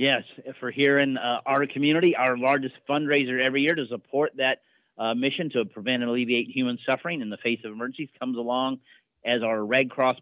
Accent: American